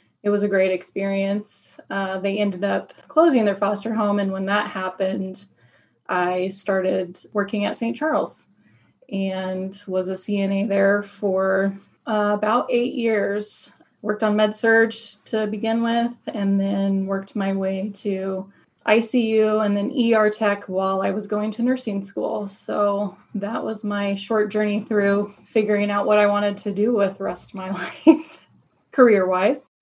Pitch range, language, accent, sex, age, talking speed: 195-215 Hz, English, American, female, 20-39, 155 wpm